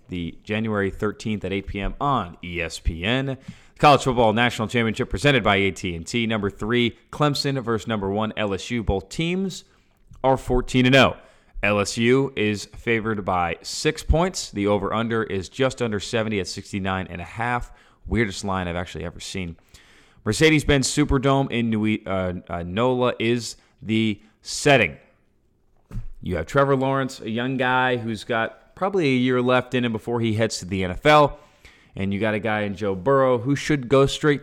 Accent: American